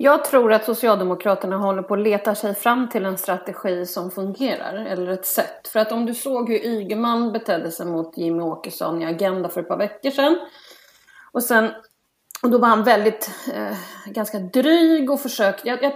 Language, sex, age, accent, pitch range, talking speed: Swedish, female, 30-49, native, 195-275 Hz, 190 wpm